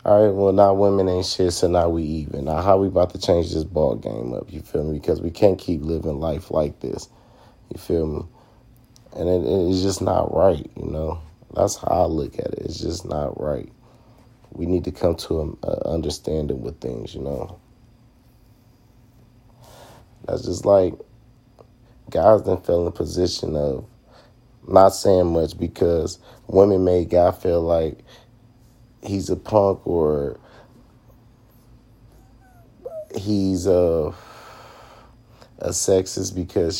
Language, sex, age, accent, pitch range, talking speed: English, male, 40-59, American, 85-115 Hz, 150 wpm